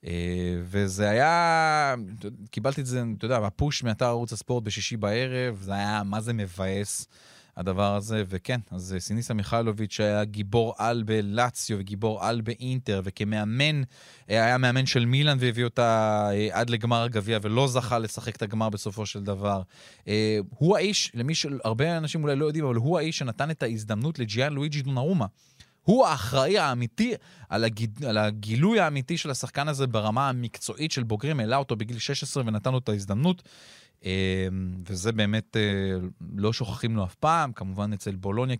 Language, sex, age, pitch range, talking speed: Hebrew, male, 20-39, 105-135 Hz, 155 wpm